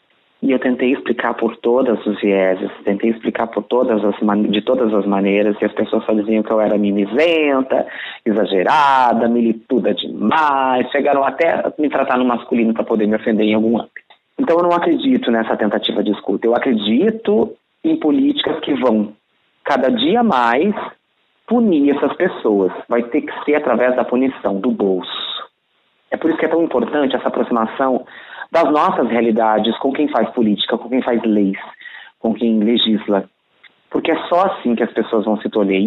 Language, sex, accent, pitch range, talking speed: Portuguese, male, Brazilian, 105-130 Hz, 175 wpm